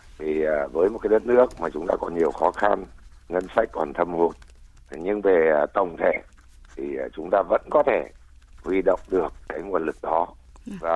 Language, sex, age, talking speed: Vietnamese, male, 60-79, 195 wpm